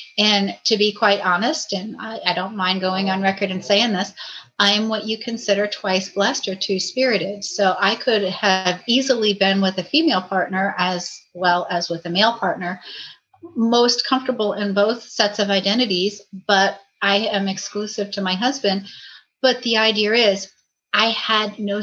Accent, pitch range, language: American, 185-215 Hz, English